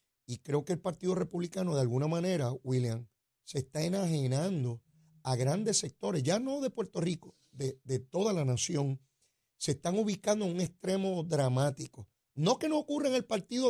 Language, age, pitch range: Spanish, 40-59, 130-185 Hz